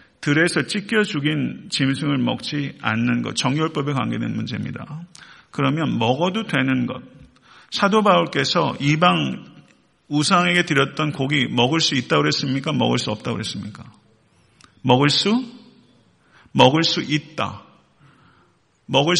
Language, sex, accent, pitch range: Korean, male, native, 130-175 Hz